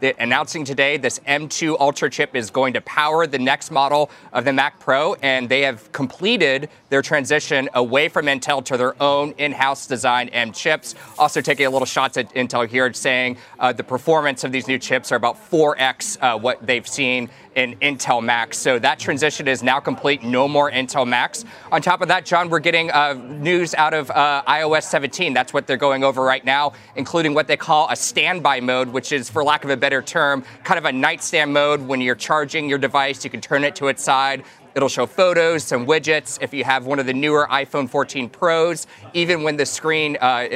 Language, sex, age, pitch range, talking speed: English, male, 20-39, 135-155 Hz, 210 wpm